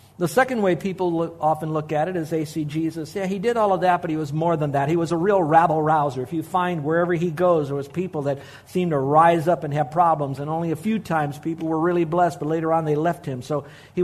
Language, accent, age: English, American, 50-69